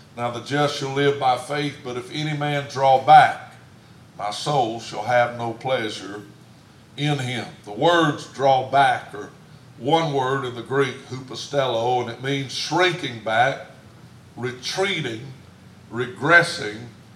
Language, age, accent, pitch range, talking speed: English, 60-79, American, 115-140 Hz, 135 wpm